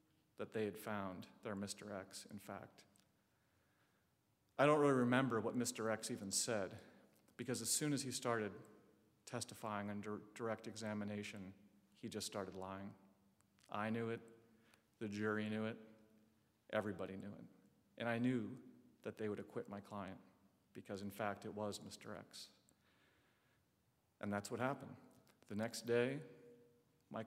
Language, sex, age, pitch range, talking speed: English, male, 40-59, 100-120 Hz, 145 wpm